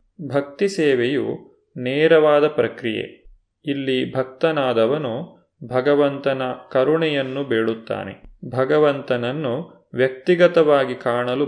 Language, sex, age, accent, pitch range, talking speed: Kannada, male, 30-49, native, 130-150 Hz, 65 wpm